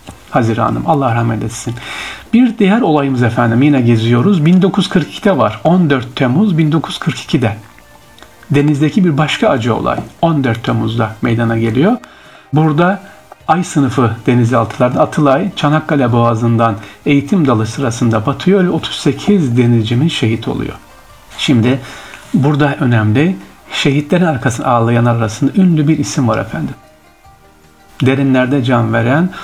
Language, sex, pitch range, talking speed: Turkish, male, 115-150 Hz, 110 wpm